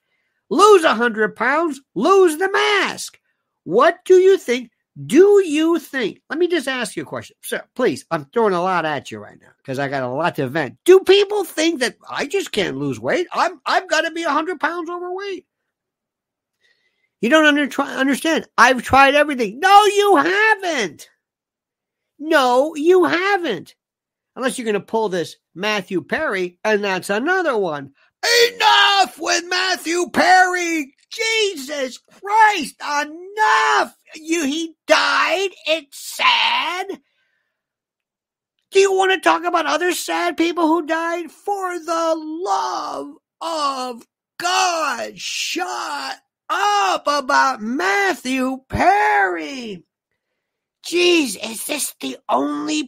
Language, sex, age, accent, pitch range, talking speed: English, male, 50-69, American, 255-370 Hz, 140 wpm